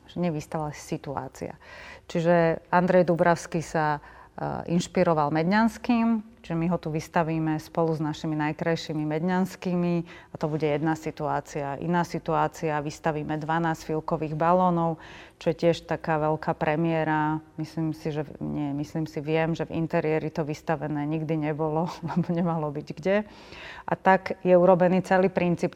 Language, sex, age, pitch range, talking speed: Slovak, female, 30-49, 155-175 Hz, 140 wpm